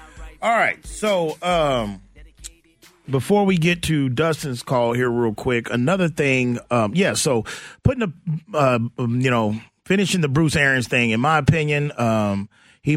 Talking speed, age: 155 wpm, 30-49